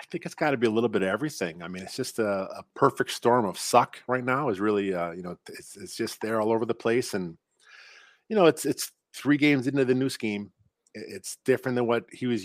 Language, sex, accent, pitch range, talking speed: English, male, American, 105-130 Hz, 255 wpm